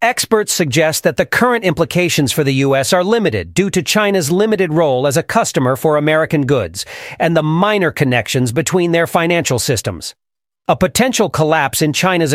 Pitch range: 130-175 Hz